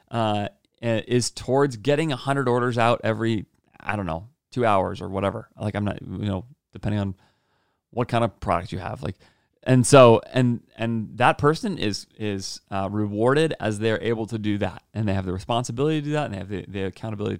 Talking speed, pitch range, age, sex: 205 wpm, 105-145 Hz, 30-49, male